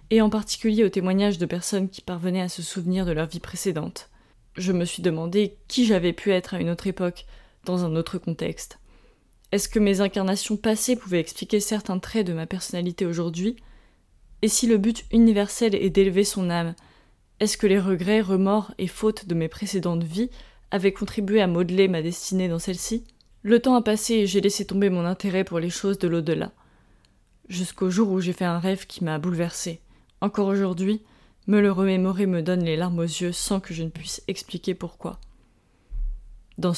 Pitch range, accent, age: 175-205 Hz, French, 20-39